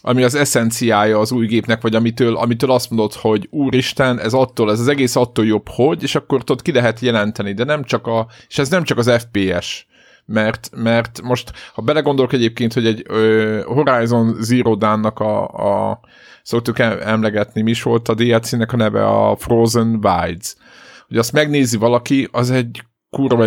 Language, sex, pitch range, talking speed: Hungarian, male, 105-125 Hz, 175 wpm